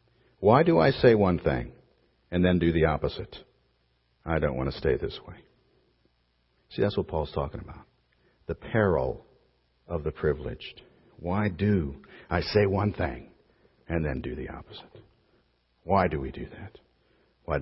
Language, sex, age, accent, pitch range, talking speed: English, male, 60-79, American, 70-95 Hz, 155 wpm